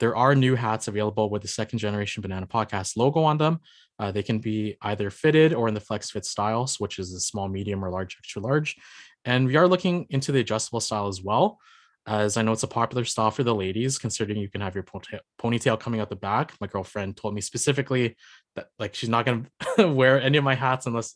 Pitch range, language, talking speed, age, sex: 105-130 Hz, English, 235 wpm, 20-39, male